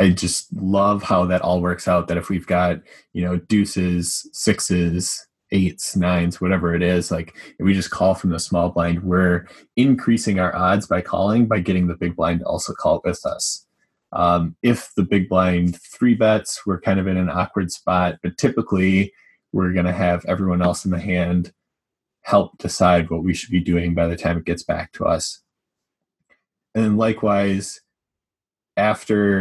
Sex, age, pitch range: male, 20-39, 90-100 Hz